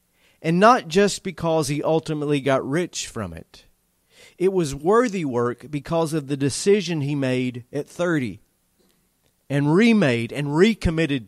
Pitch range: 115-165 Hz